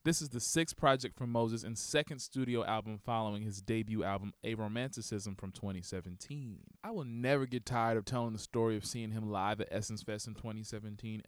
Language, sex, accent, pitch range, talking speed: English, male, American, 100-135 Hz, 195 wpm